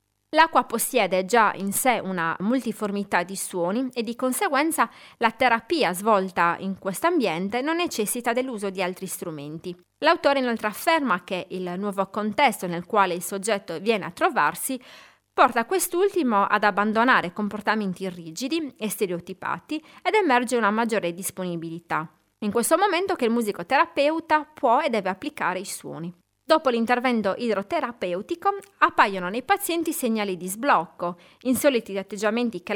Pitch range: 185-255 Hz